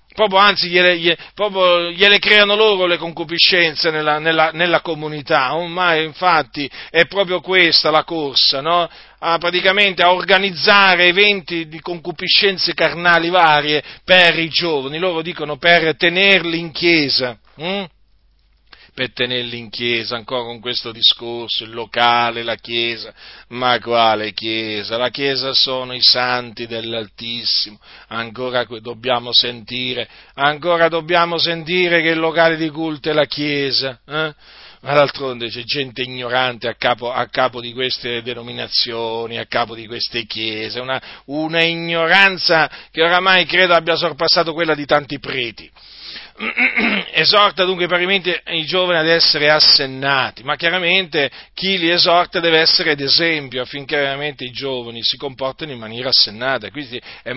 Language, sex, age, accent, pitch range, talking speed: Italian, male, 40-59, native, 125-170 Hz, 140 wpm